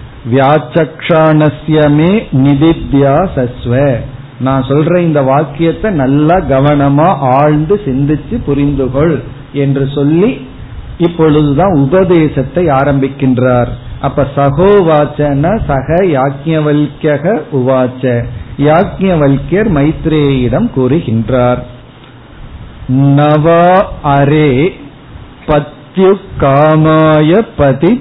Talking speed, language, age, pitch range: 50 wpm, Tamil, 50-69, 135-160 Hz